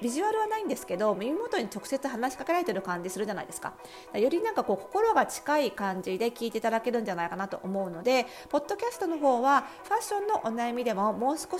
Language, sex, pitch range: Japanese, female, 190-280 Hz